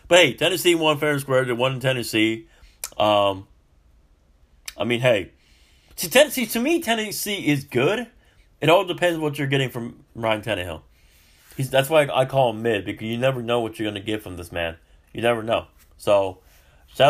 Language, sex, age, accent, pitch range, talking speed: English, male, 30-49, American, 85-135 Hz, 185 wpm